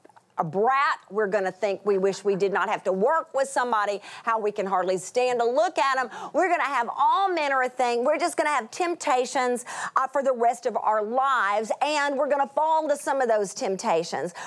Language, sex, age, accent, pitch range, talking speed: English, female, 40-59, American, 230-300 Hz, 235 wpm